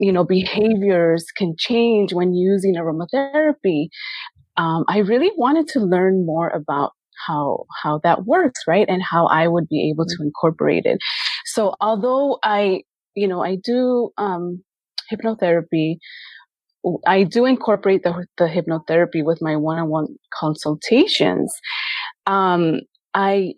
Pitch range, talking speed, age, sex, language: 165-210 Hz, 130 wpm, 30-49, female, English